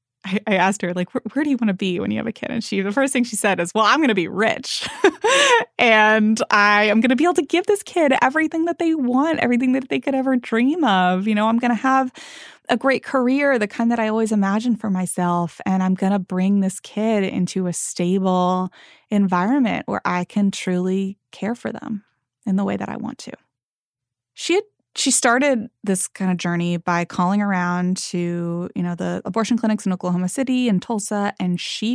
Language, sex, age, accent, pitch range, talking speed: English, female, 20-39, American, 180-240 Hz, 220 wpm